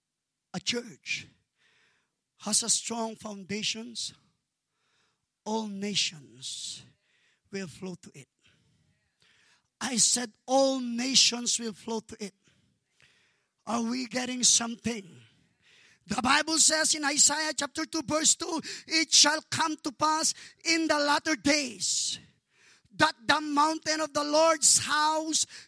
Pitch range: 245-325 Hz